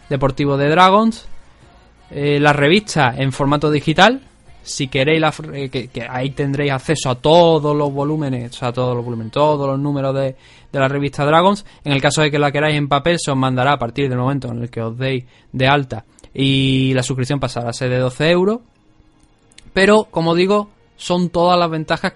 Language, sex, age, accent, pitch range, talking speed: Spanish, male, 20-39, Spanish, 130-155 Hz, 205 wpm